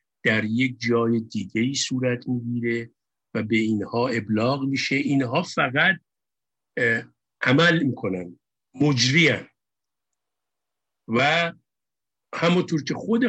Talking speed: 95 wpm